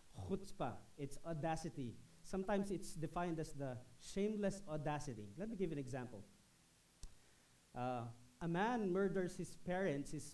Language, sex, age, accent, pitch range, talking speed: English, male, 40-59, Filipino, 140-185 Hz, 135 wpm